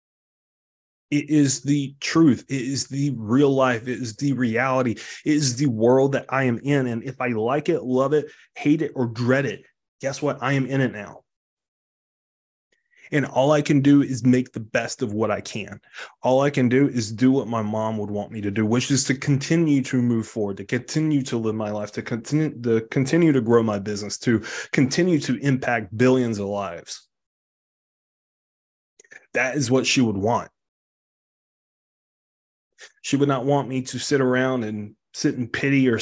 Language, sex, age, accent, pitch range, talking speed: English, male, 20-39, American, 115-140 Hz, 185 wpm